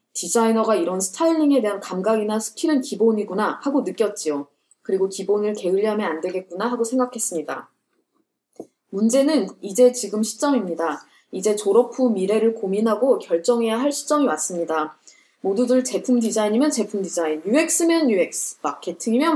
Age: 20-39